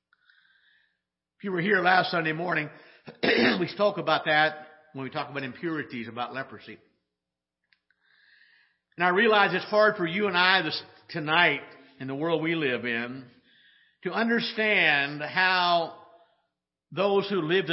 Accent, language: American, English